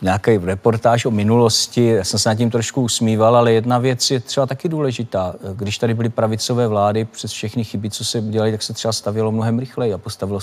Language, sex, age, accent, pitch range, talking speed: Czech, male, 50-69, native, 105-125 Hz, 215 wpm